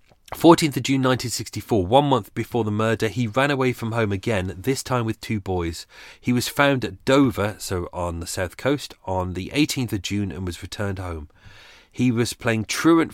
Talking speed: 195 wpm